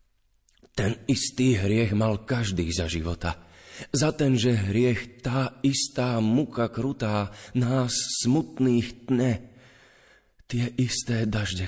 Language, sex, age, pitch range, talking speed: Slovak, male, 30-49, 90-120 Hz, 110 wpm